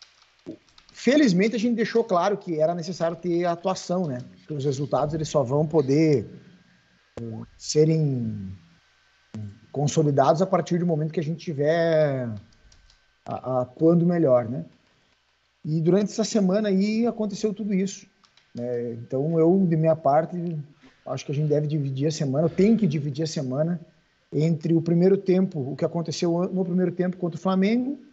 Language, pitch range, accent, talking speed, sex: Portuguese, 145-185 Hz, Brazilian, 150 wpm, male